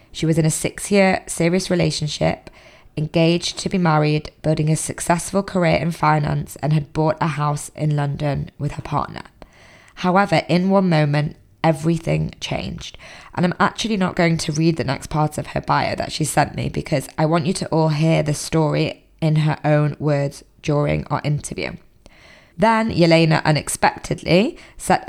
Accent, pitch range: British, 150-170 Hz